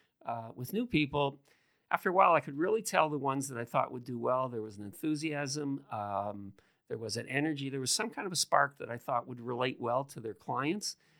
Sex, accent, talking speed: male, American, 235 wpm